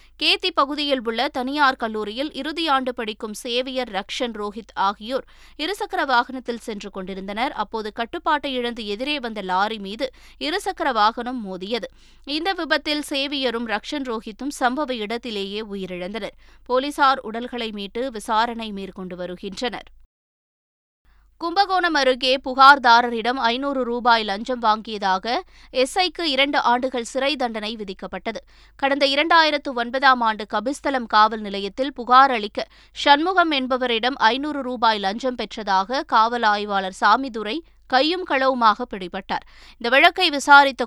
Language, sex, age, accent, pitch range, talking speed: Tamil, female, 20-39, native, 215-275 Hz, 110 wpm